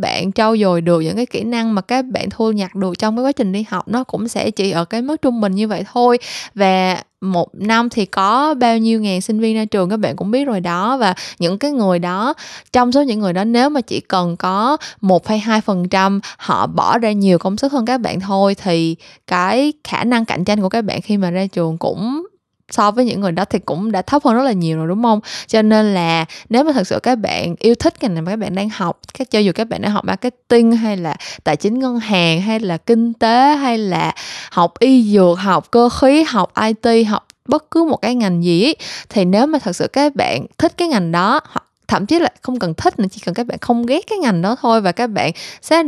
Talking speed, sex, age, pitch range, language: 250 wpm, female, 20-39, 185-245 Hz, Vietnamese